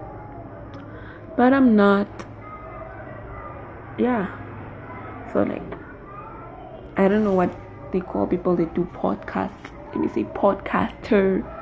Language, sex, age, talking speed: English, female, 20-39, 105 wpm